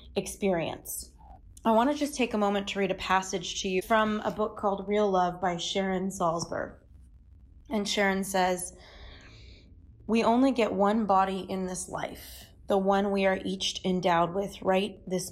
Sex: female